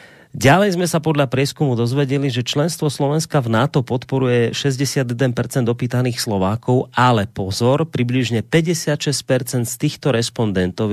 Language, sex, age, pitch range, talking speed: Slovak, male, 30-49, 110-145 Hz, 120 wpm